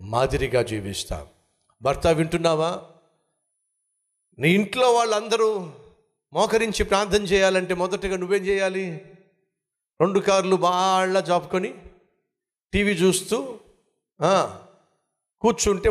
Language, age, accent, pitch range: Telugu, 50-69, native, 115-190 Hz